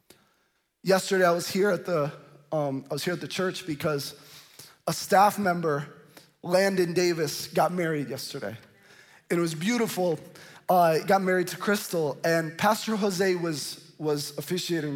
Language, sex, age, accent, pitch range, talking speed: English, male, 20-39, American, 150-190 Hz, 150 wpm